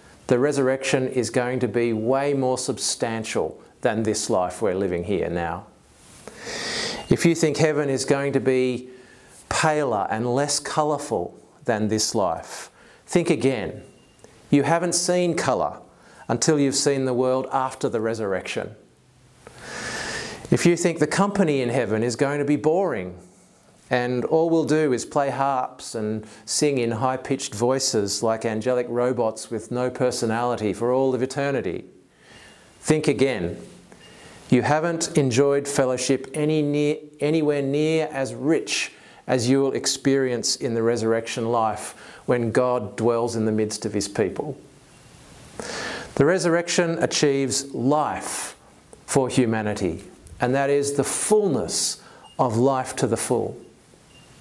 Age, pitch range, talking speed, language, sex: 40-59, 120-145 Hz, 135 wpm, English, male